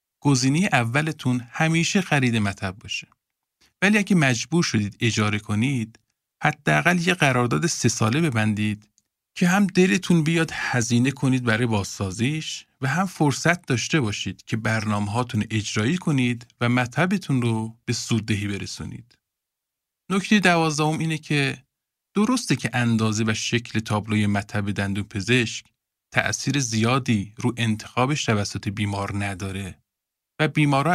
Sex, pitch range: male, 105-150 Hz